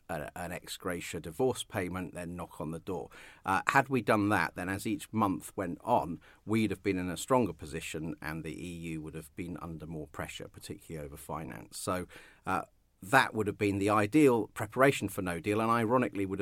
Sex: male